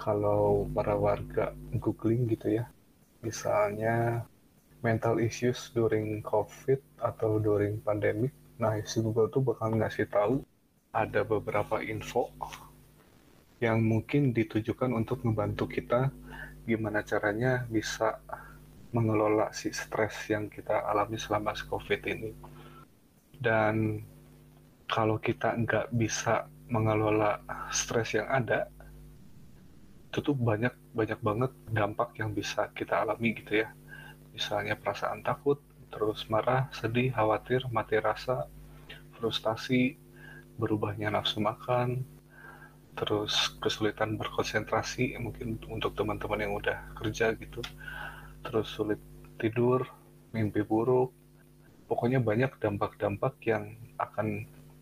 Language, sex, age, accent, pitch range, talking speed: Indonesian, male, 20-39, native, 105-125 Hz, 105 wpm